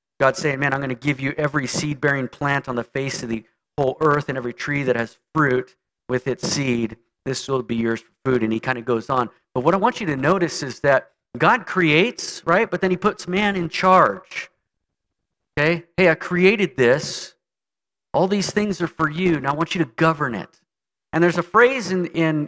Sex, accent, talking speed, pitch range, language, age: male, American, 220 wpm, 140-180 Hz, English, 40-59